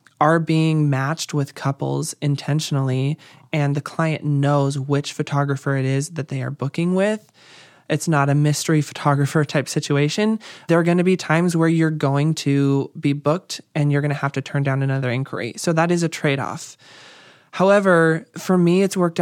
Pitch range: 140-160 Hz